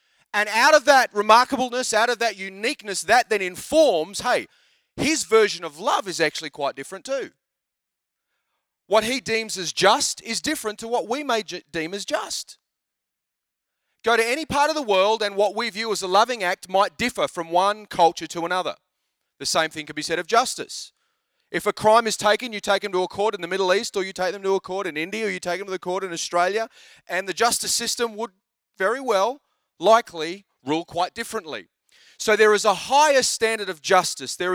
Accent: Australian